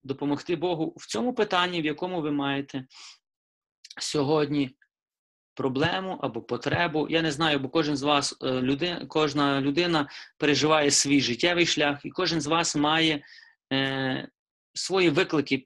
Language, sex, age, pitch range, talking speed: Ukrainian, male, 30-49, 145-180 Hz, 135 wpm